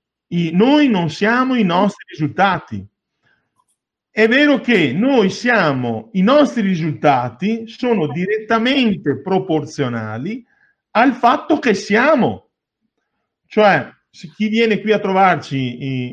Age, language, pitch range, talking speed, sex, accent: 50-69, Italian, 140-210 Hz, 105 wpm, male, native